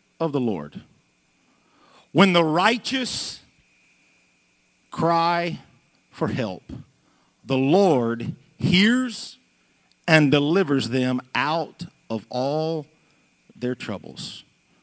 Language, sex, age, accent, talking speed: English, male, 50-69, American, 80 wpm